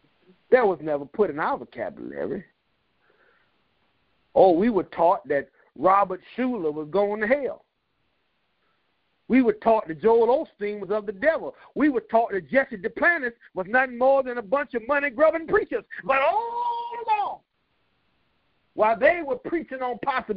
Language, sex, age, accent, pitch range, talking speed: English, male, 50-69, American, 205-325 Hz, 155 wpm